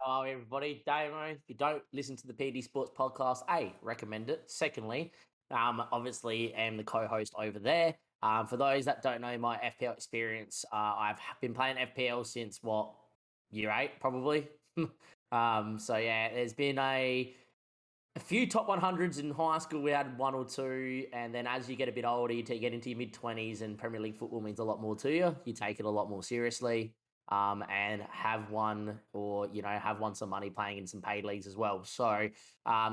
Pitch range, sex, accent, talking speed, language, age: 110-130 Hz, male, Australian, 205 wpm, English, 20-39